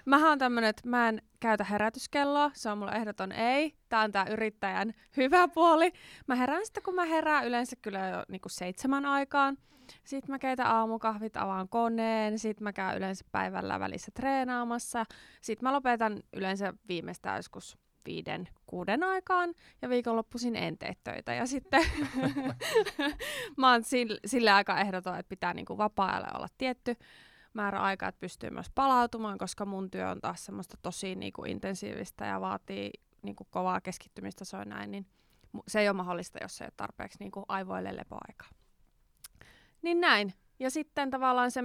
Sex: female